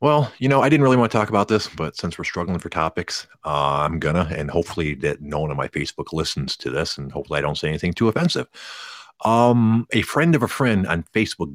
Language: English